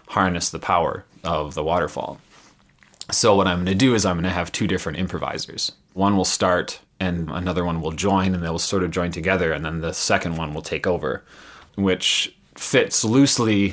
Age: 30-49